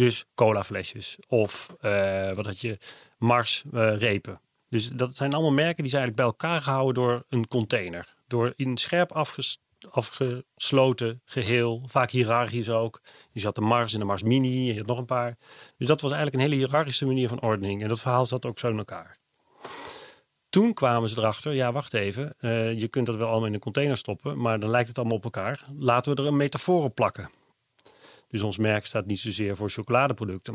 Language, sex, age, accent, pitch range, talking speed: Dutch, male, 40-59, Dutch, 105-130 Hz, 200 wpm